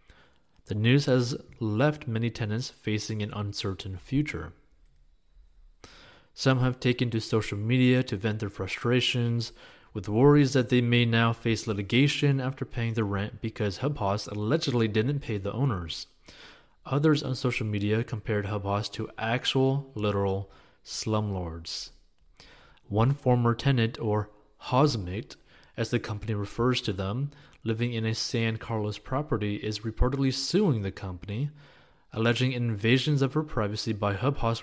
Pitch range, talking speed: 105-125 Hz, 135 wpm